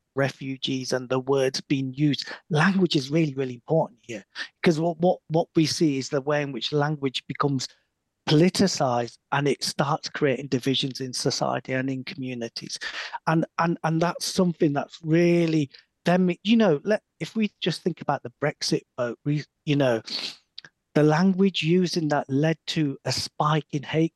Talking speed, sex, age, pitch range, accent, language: 170 wpm, male, 40-59, 135-175 Hz, British, English